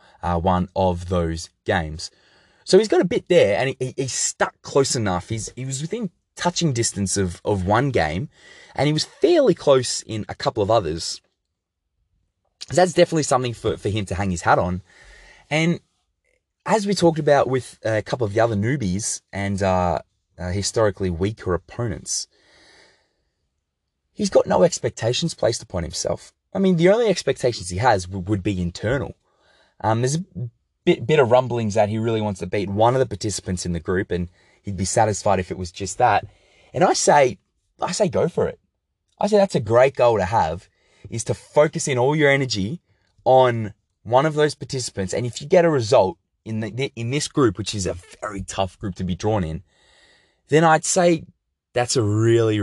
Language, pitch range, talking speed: English, 95-135 Hz, 195 wpm